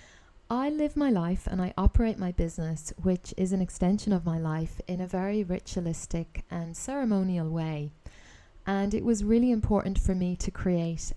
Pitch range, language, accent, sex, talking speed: 170-205 Hz, English, British, female, 170 wpm